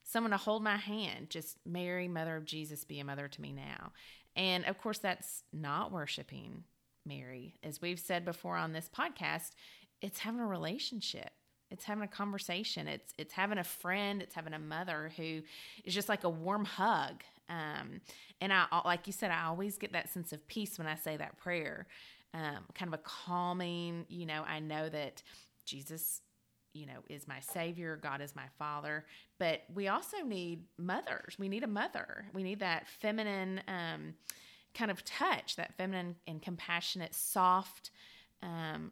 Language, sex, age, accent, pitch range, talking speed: English, female, 30-49, American, 155-195 Hz, 175 wpm